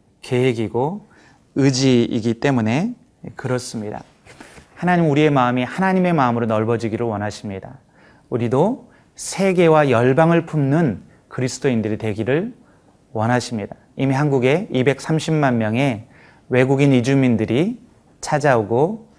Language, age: Korean, 30-49